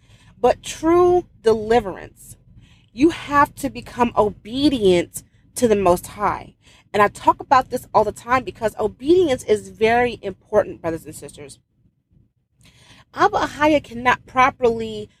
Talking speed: 125 wpm